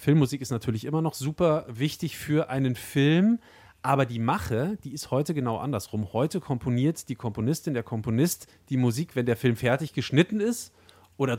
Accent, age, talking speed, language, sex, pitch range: German, 40-59, 175 wpm, German, male, 120-160 Hz